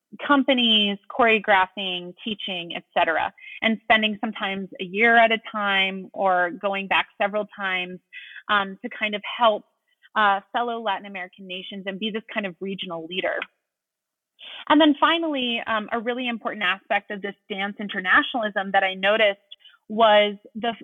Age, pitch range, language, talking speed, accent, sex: 30-49, 190-235 Hz, English, 145 wpm, American, female